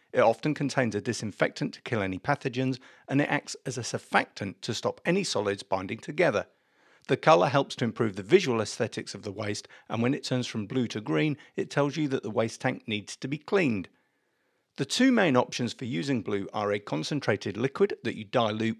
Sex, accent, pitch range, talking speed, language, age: male, British, 110-145 Hz, 210 wpm, English, 50-69